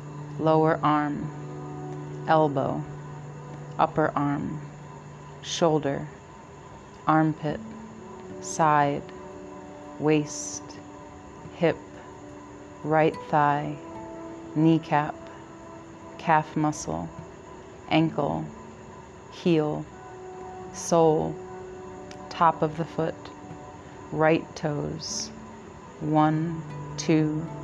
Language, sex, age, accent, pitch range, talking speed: English, female, 30-49, American, 140-160 Hz, 55 wpm